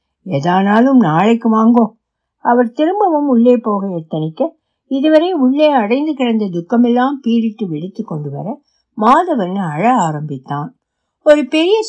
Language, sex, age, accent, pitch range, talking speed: Tamil, female, 60-79, native, 185-255 Hz, 65 wpm